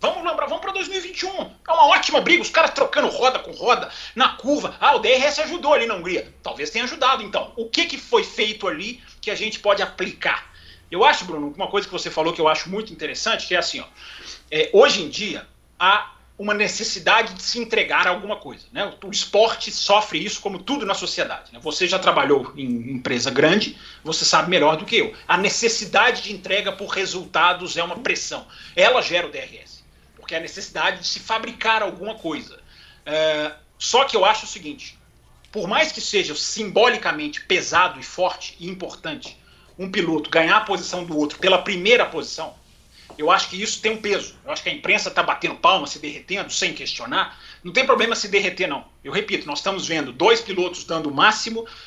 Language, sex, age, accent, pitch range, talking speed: Portuguese, male, 40-59, Brazilian, 180-270 Hz, 200 wpm